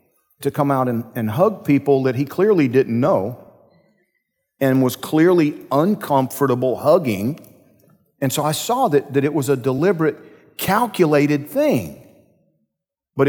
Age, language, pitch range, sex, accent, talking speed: 50-69, English, 125-155 Hz, male, American, 135 wpm